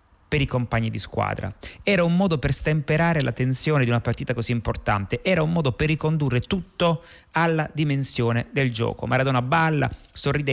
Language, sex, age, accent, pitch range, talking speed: Italian, male, 30-49, native, 120-150 Hz, 170 wpm